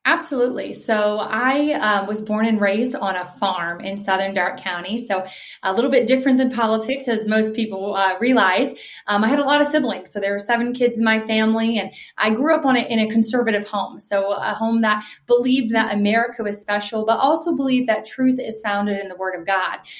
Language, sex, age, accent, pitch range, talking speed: English, female, 20-39, American, 205-245 Hz, 220 wpm